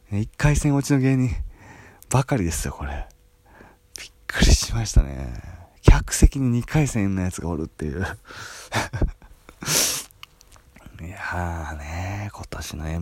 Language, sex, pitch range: Japanese, male, 85-120 Hz